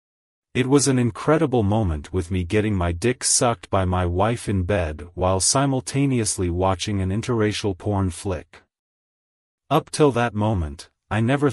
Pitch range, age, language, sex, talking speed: 90-120 Hz, 30-49, English, male, 150 wpm